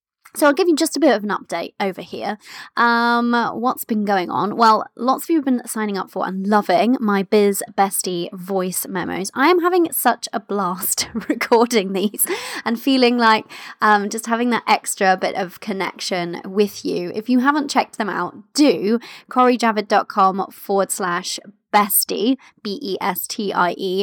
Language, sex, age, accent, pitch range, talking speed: English, female, 20-39, British, 195-255 Hz, 165 wpm